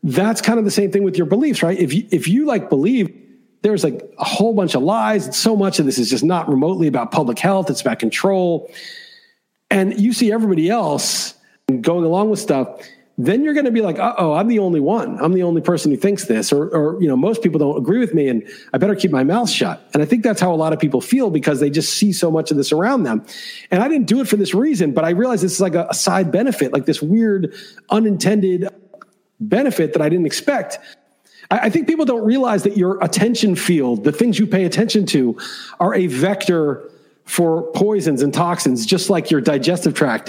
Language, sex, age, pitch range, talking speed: English, male, 40-59, 160-210 Hz, 230 wpm